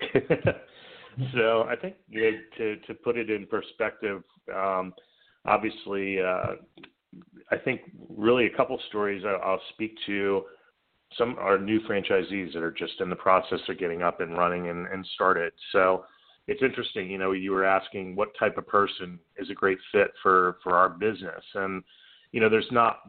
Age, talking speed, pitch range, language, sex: 30-49, 175 wpm, 90-100 Hz, English, male